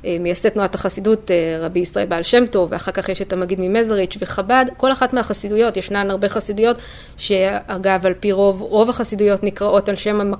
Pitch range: 190-230 Hz